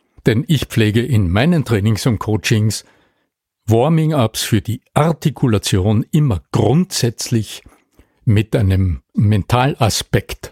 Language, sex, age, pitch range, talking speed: German, male, 60-79, 100-125 Hz, 95 wpm